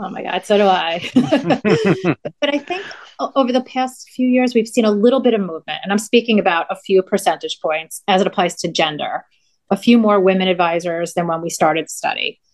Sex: female